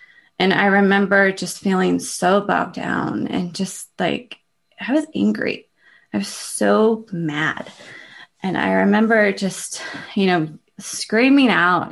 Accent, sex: American, female